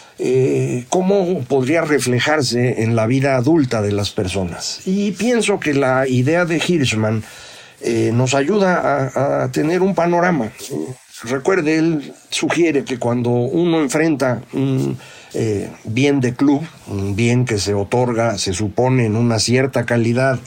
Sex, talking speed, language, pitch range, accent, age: male, 145 wpm, Spanish, 120-175 Hz, Mexican, 50-69